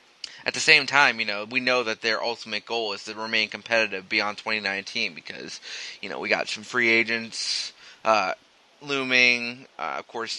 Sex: male